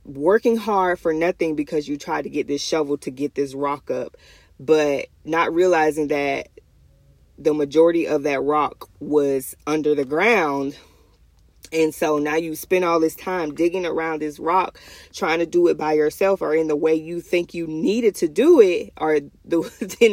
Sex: female